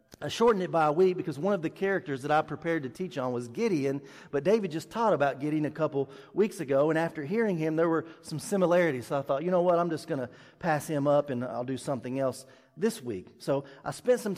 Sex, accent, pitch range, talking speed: male, American, 140-205 Hz, 250 wpm